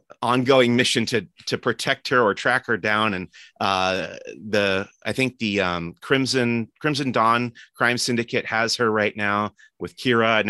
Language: English